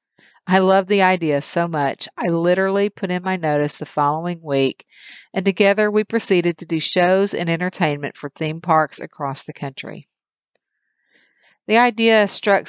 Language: English